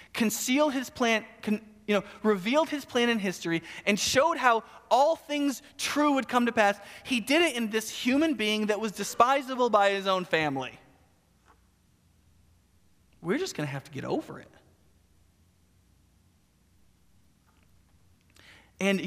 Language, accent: English, American